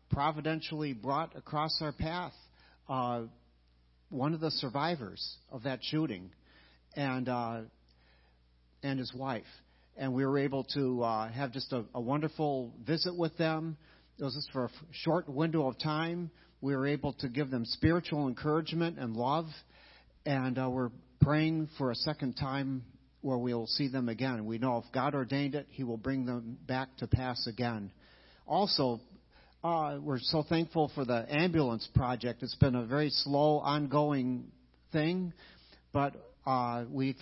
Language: English